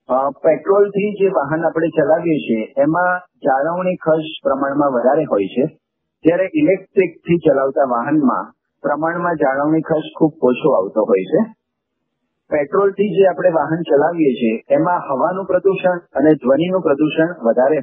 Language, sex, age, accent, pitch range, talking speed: Gujarati, male, 50-69, native, 150-195 Hz, 130 wpm